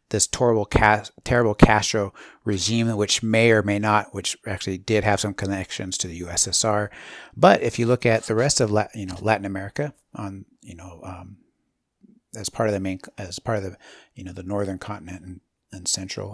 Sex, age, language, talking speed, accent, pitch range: male, 50-69, English, 190 wpm, American, 95-115 Hz